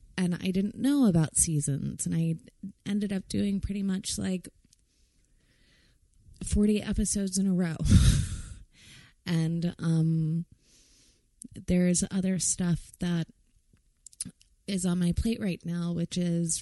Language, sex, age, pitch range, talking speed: English, female, 20-39, 160-195 Hz, 120 wpm